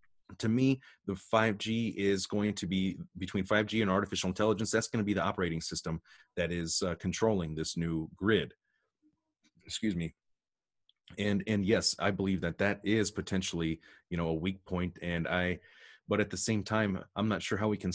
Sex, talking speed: male, 185 wpm